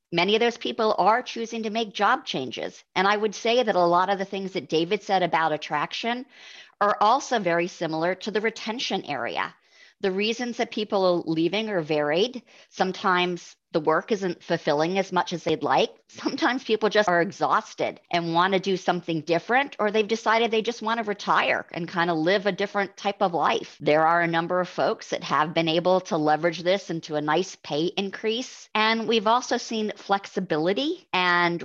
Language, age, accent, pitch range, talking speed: English, 50-69, American, 170-220 Hz, 195 wpm